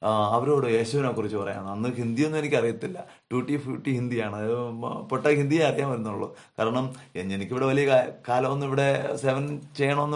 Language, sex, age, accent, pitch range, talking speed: Malayalam, male, 30-49, native, 110-145 Hz, 135 wpm